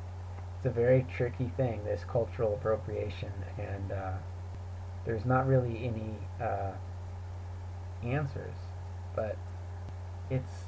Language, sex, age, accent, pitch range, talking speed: English, male, 30-49, American, 90-110 Hz, 95 wpm